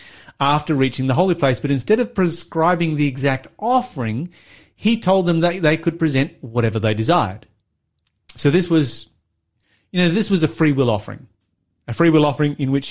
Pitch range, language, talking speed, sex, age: 115-160 Hz, English, 180 wpm, male, 30-49